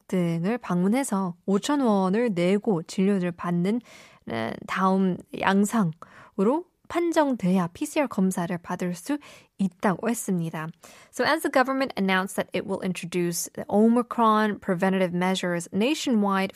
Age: 20-39